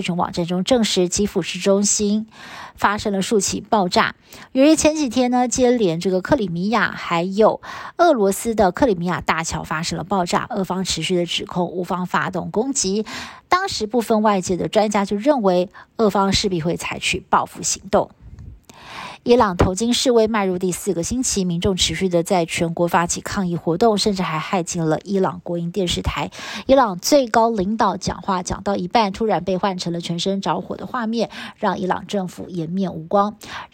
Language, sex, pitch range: Chinese, female, 180-220 Hz